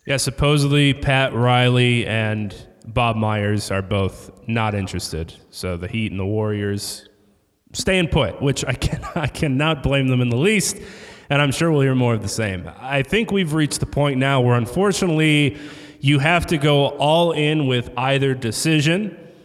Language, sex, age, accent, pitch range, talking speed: English, male, 30-49, American, 130-170 Hz, 175 wpm